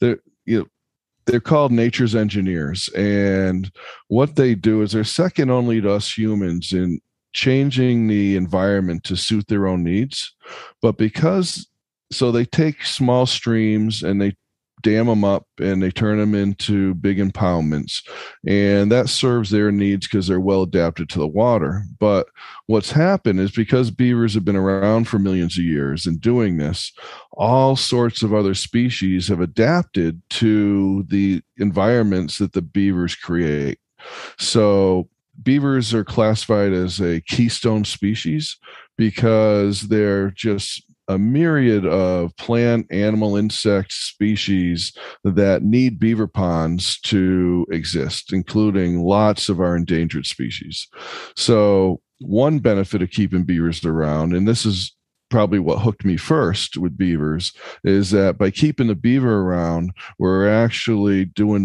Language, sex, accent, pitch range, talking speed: English, male, American, 90-110 Hz, 140 wpm